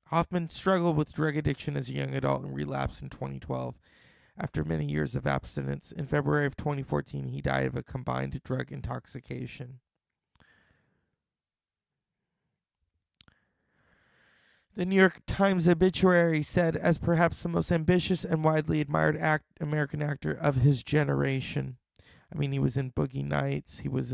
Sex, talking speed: male, 140 wpm